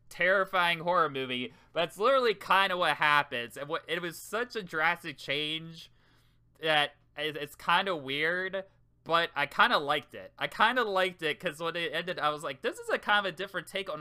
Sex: male